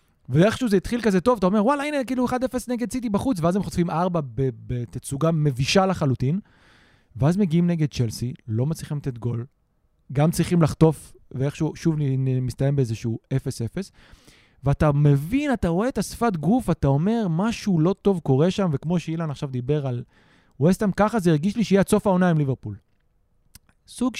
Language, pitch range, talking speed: Hebrew, 135-210 Hz, 165 wpm